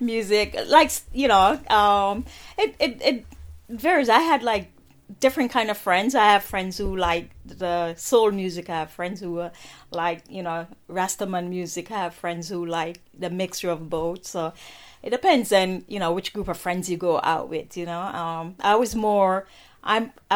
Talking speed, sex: 190 wpm, female